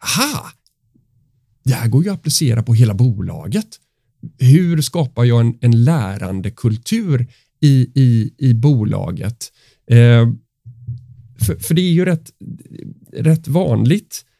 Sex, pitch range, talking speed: male, 115-150 Hz, 120 wpm